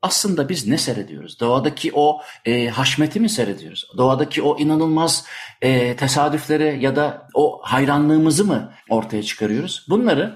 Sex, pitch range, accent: male, 115-155 Hz, native